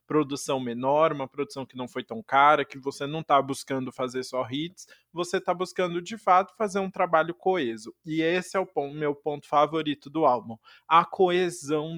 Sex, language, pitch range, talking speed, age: male, Portuguese, 130-160 Hz, 185 wpm, 20-39